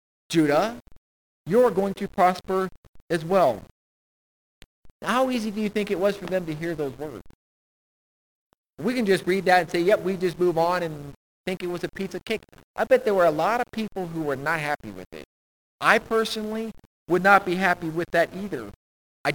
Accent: American